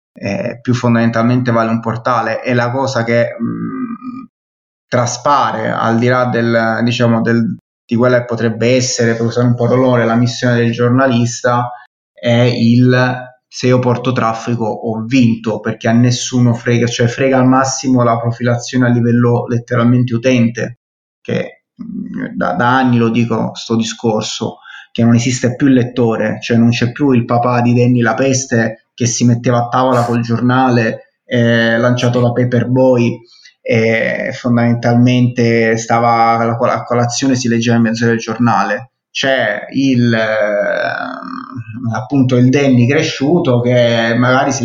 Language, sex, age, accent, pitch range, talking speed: Italian, male, 20-39, native, 115-125 Hz, 155 wpm